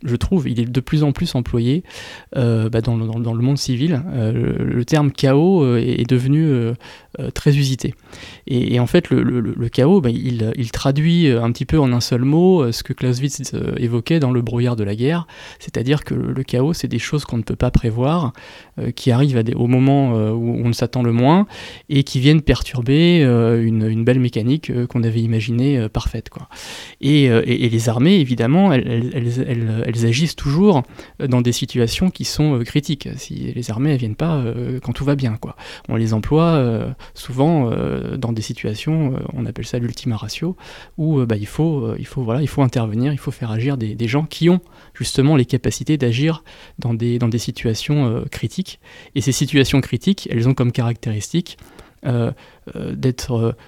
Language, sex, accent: French, male, French